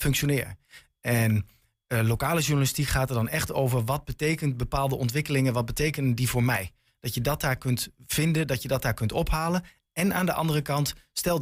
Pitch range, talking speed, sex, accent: 120-140 Hz, 195 wpm, male, Dutch